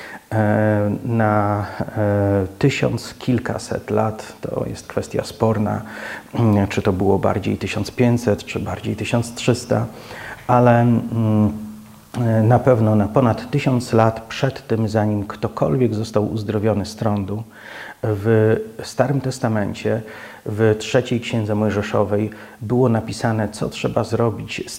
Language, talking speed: Polish, 105 wpm